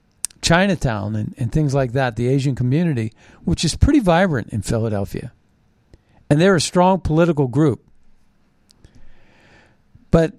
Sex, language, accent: male, English, American